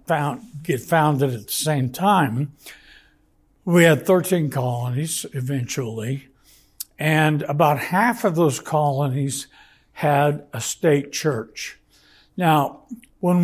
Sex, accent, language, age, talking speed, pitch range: male, American, English, 60-79, 105 wpm, 135-175 Hz